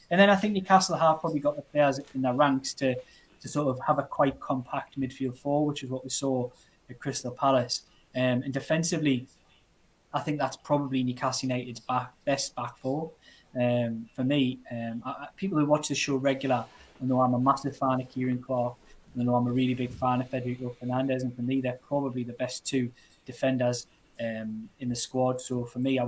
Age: 20-39